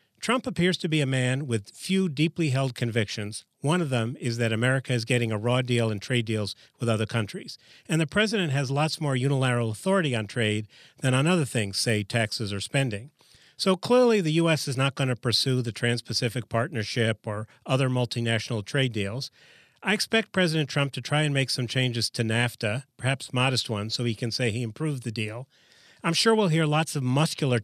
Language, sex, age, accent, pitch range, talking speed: English, male, 40-59, American, 115-150 Hz, 200 wpm